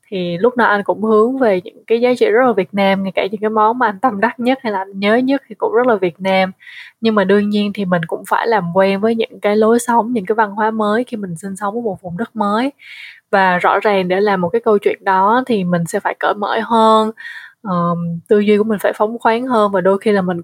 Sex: female